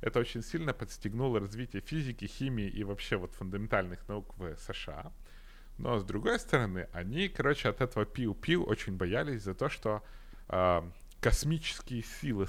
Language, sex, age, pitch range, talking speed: Ukrainian, male, 30-49, 100-130 Hz, 150 wpm